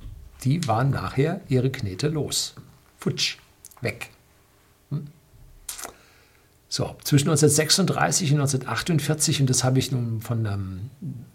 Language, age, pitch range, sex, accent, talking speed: German, 60-79, 120-150 Hz, male, German, 100 wpm